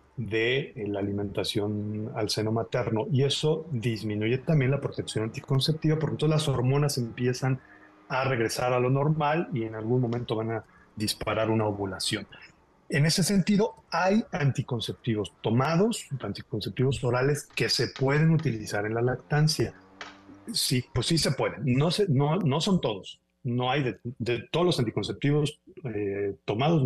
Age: 40-59